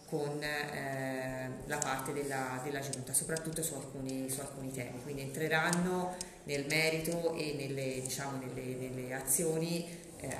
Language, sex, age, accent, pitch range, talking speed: Italian, female, 30-49, native, 130-155 Hz, 140 wpm